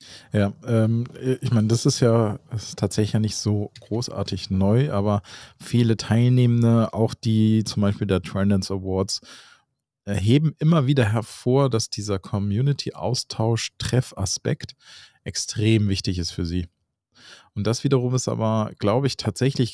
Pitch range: 105-125 Hz